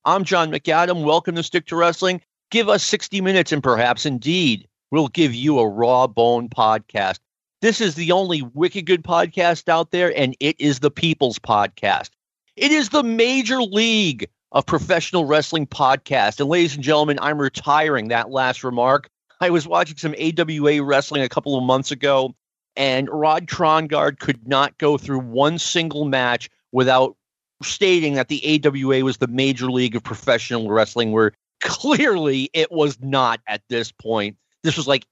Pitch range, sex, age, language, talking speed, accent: 130-170 Hz, male, 40-59, English, 170 wpm, American